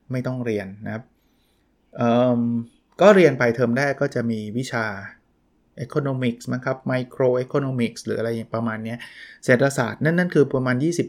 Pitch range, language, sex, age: 115-140 Hz, Thai, male, 20-39